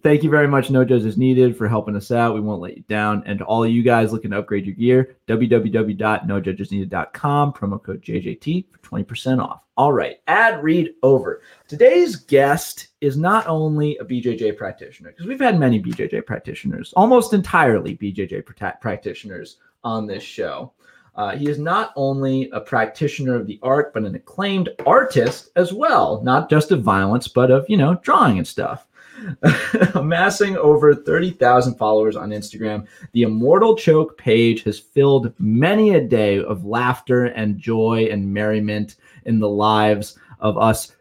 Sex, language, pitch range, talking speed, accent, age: male, English, 105-145 Hz, 165 wpm, American, 30-49